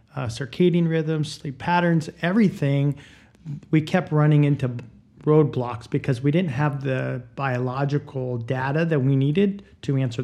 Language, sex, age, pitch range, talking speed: English, male, 40-59, 130-155 Hz, 135 wpm